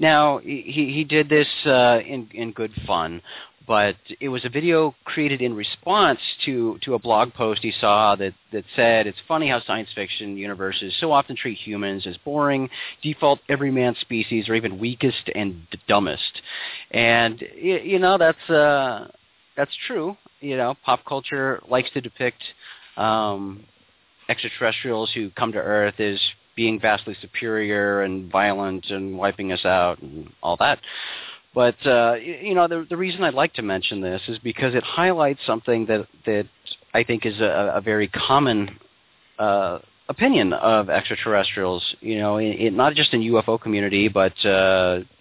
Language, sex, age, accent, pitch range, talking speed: English, male, 40-59, American, 100-130 Hz, 160 wpm